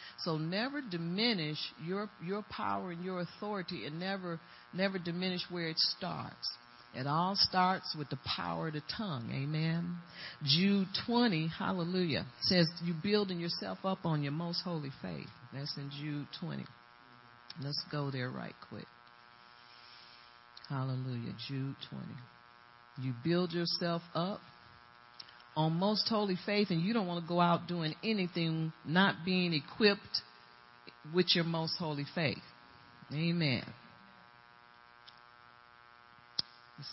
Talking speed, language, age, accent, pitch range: 125 wpm, English, 50-69, American, 120-175 Hz